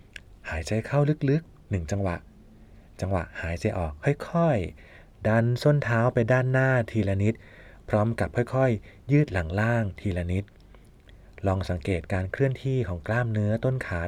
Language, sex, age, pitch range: Thai, male, 20-39, 95-120 Hz